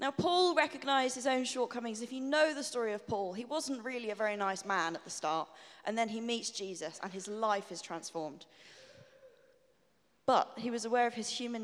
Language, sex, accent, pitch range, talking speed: English, female, British, 195-275 Hz, 205 wpm